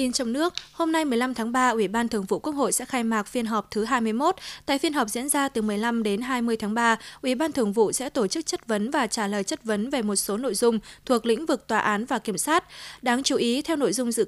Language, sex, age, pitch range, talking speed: Vietnamese, female, 20-39, 210-260 Hz, 280 wpm